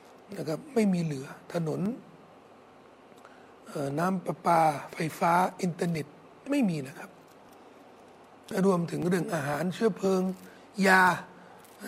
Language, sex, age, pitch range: Thai, male, 60-79, 160-205 Hz